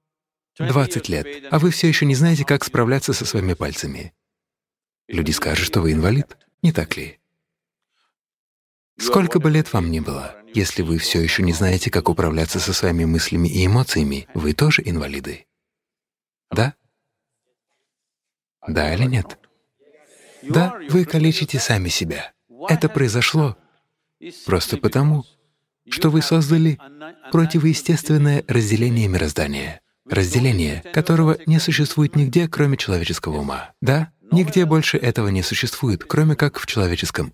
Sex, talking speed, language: male, 130 wpm, English